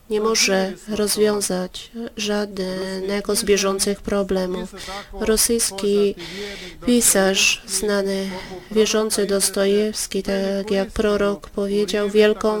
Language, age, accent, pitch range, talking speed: Polish, 20-39, native, 190-210 Hz, 80 wpm